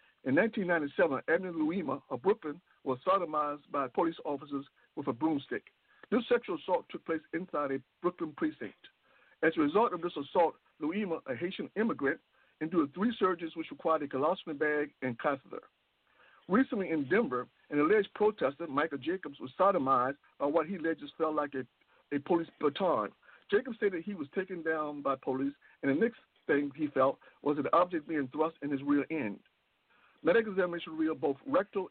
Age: 60-79